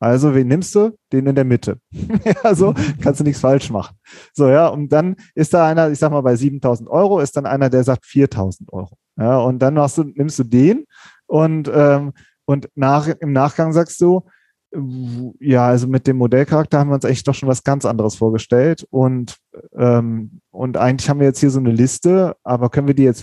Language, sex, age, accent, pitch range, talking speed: German, male, 30-49, German, 130-155 Hz, 210 wpm